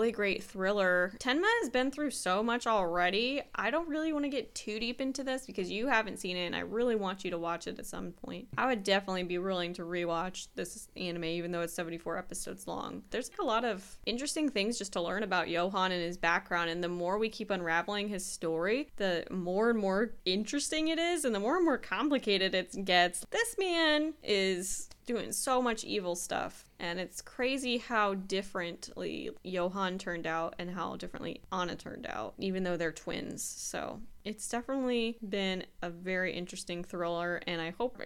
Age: 10-29